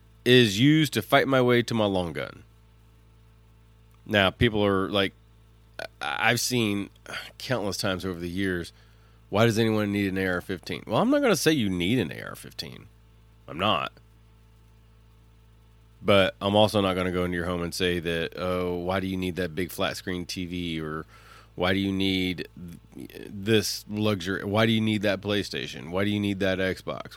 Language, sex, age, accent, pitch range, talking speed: English, male, 30-49, American, 95-110 Hz, 180 wpm